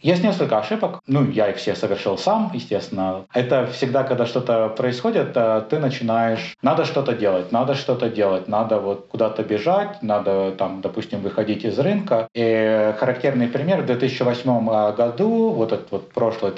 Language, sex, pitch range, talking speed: Russian, male, 105-135 Hz, 150 wpm